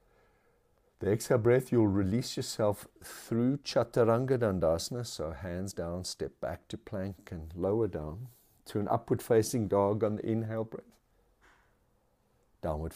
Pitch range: 90-115 Hz